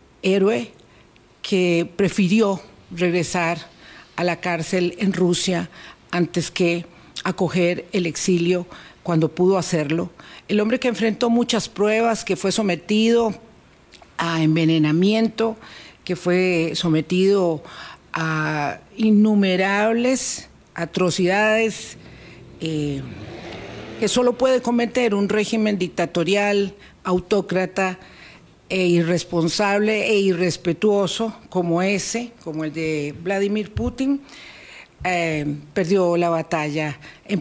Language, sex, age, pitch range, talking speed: Spanish, female, 50-69, 160-205 Hz, 95 wpm